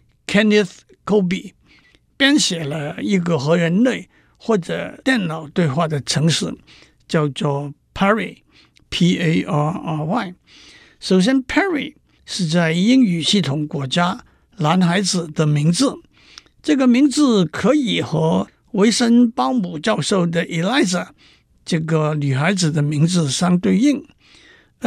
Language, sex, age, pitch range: Chinese, male, 60-79, 155-220 Hz